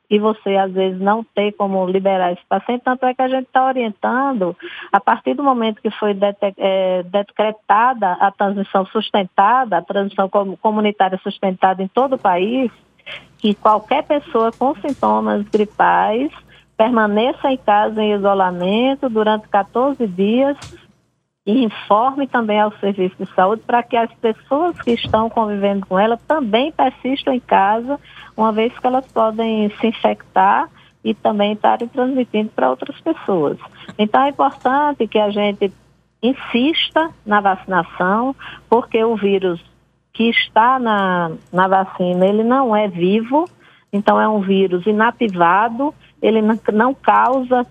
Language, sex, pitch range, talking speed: Portuguese, female, 200-250 Hz, 140 wpm